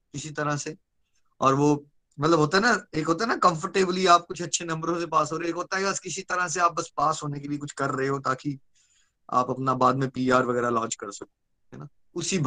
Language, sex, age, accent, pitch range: Hindi, male, 20-39, native, 130-170 Hz